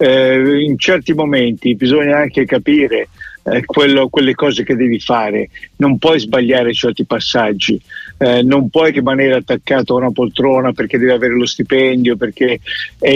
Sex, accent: male, native